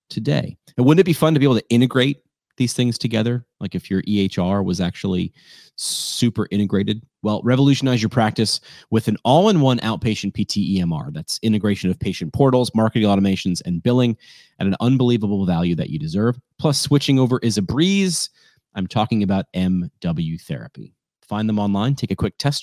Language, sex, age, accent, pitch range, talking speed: English, male, 30-49, American, 100-135 Hz, 180 wpm